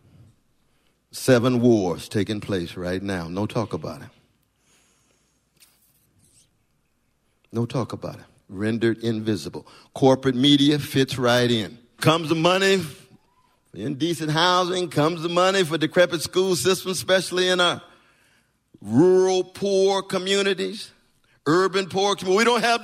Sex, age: male, 50-69